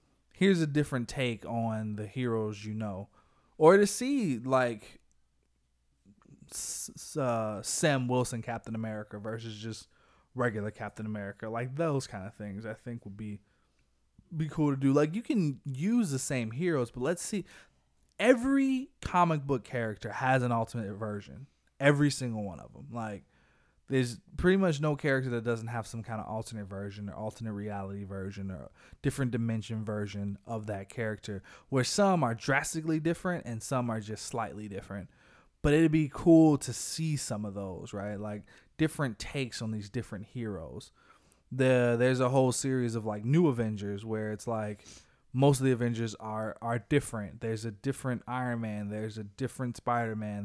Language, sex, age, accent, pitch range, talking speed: English, male, 20-39, American, 105-135 Hz, 165 wpm